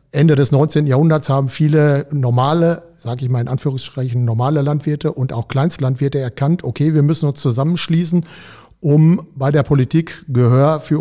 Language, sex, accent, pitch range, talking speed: German, male, German, 130-155 Hz, 160 wpm